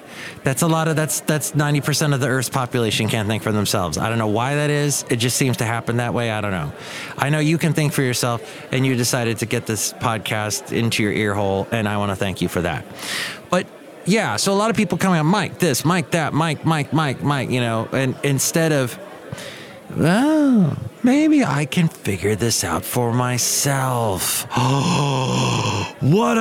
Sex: male